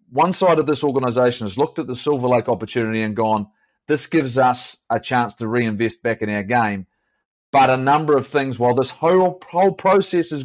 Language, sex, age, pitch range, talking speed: English, male, 30-49, 120-150 Hz, 205 wpm